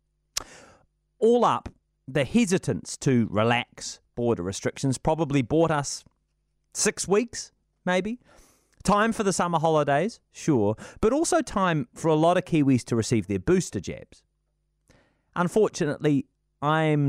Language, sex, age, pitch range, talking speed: English, male, 30-49, 125-180 Hz, 125 wpm